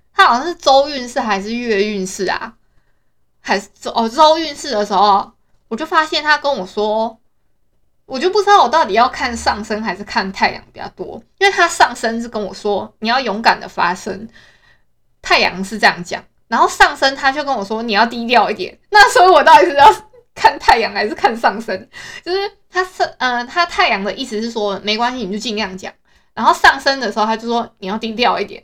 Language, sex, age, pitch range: Chinese, female, 20-39, 205-310 Hz